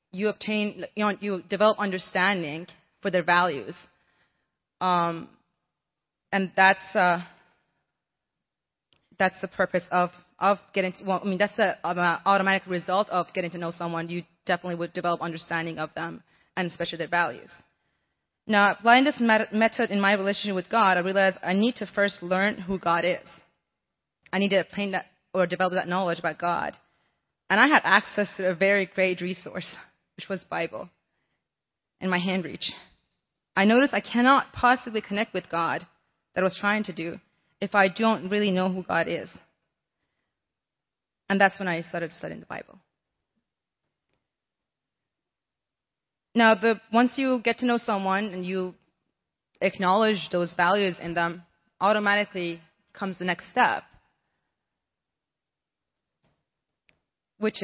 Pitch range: 175-205 Hz